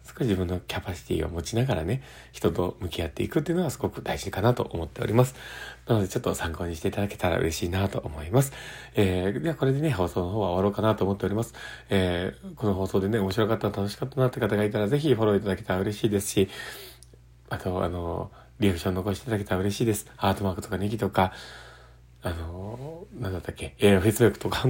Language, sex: Japanese, male